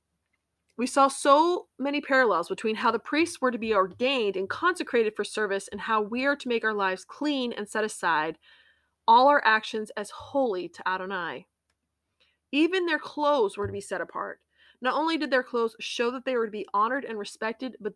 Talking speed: 195 wpm